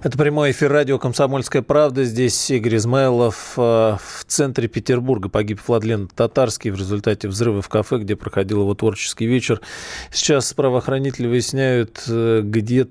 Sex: male